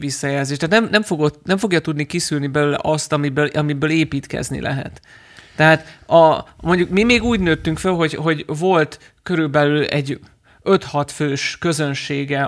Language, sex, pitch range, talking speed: Hungarian, male, 140-160 Hz, 150 wpm